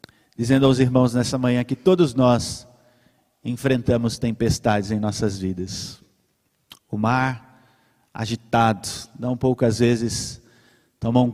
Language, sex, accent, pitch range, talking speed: Portuguese, male, Brazilian, 115-145 Hz, 105 wpm